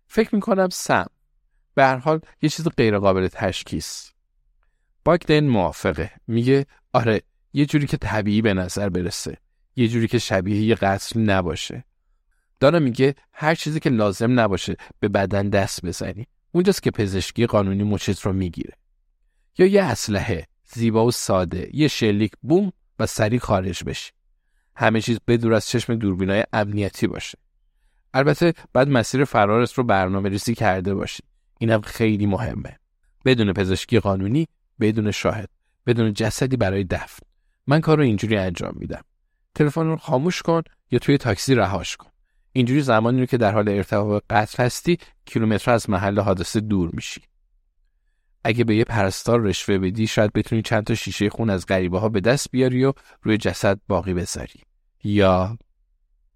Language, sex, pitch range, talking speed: Persian, male, 95-125 Hz, 150 wpm